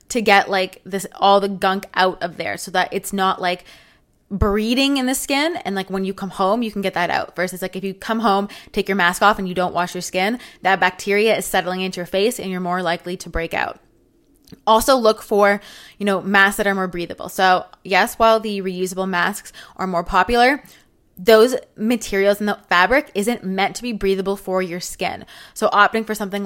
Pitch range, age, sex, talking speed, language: 185-215 Hz, 20-39, female, 220 wpm, English